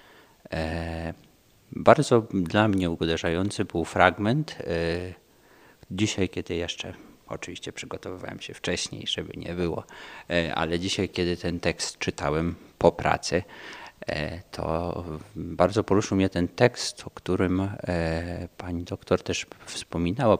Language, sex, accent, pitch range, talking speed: Polish, male, native, 80-95 Hz, 105 wpm